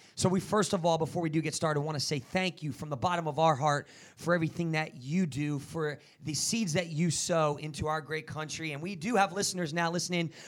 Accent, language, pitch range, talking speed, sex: American, English, 155-200 Hz, 245 wpm, male